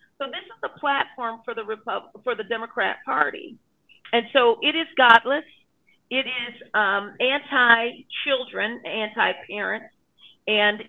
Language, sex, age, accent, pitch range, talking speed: English, female, 40-59, American, 220-275 Hz, 140 wpm